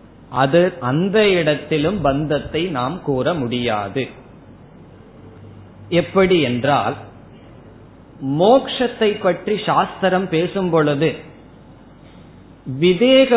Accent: native